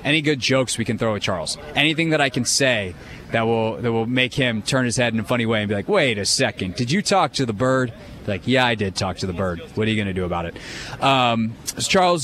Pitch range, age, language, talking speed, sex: 115-145 Hz, 20-39, English, 275 wpm, male